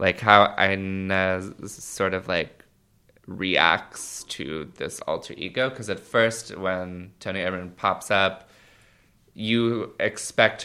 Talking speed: 120 wpm